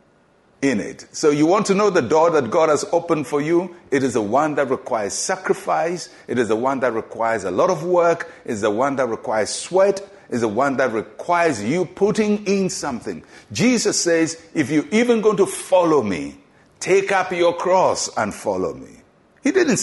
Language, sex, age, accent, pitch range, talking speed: English, male, 60-79, Nigerian, 140-190 Hz, 200 wpm